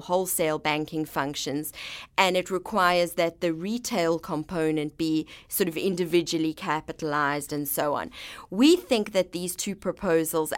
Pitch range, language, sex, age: 155-185 Hz, English, female, 30-49